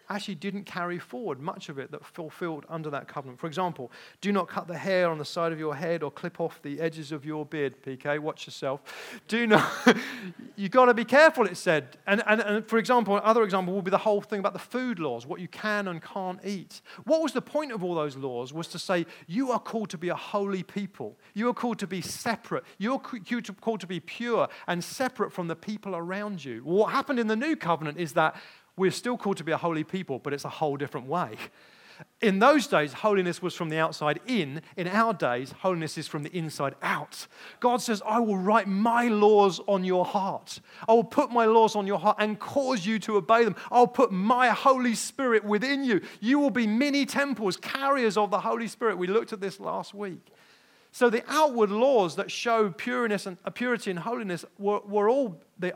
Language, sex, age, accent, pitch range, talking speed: English, male, 40-59, British, 170-230 Hz, 220 wpm